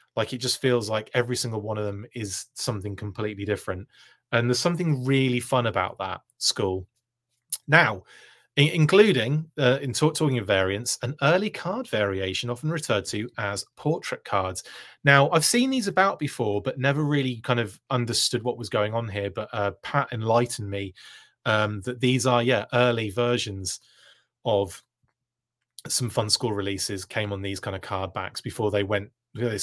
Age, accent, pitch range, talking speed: 30-49, British, 105-125 Hz, 170 wpm